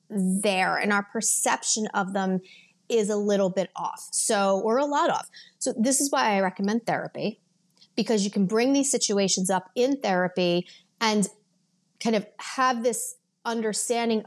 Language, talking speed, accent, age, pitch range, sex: English, 160 wpm, American, 30-49, 195-270 Hz, female